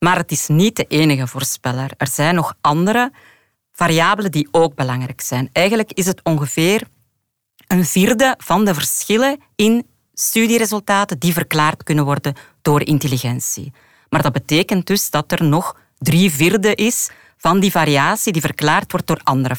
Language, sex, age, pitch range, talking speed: Dutch, female, 40-59, 145-185 Hz, 155 wpm